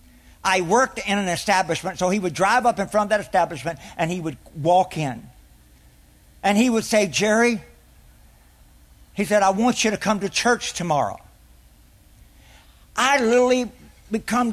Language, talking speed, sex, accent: English, 155 wpm, male, American